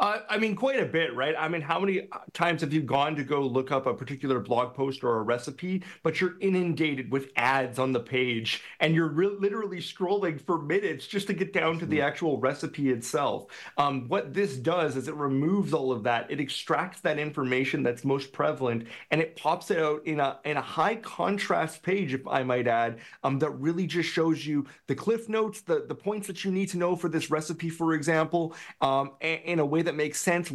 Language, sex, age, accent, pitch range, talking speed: English, male, 30-49, American, 145-190 Hz, 225 wpm